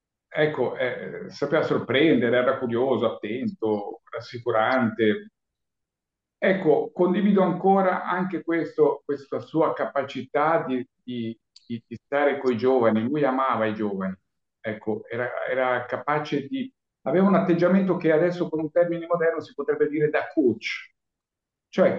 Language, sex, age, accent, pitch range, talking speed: Italian, male, 50-69, native, 115-170 Hz, 130 wpm